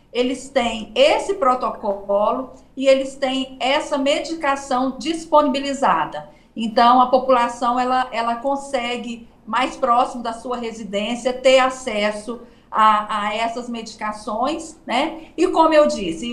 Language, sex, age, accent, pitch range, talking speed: Portuguese, female, 50-69, Brazilian, 225-275 Hz, 120 wpm